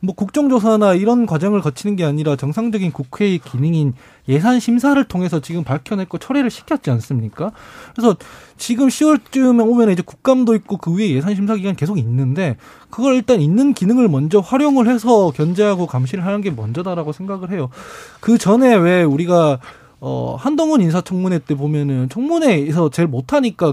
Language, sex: Korean, male